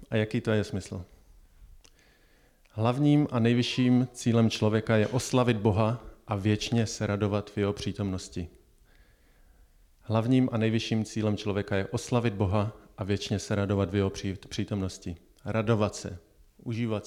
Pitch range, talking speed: 100-120 Hz, 135 wpm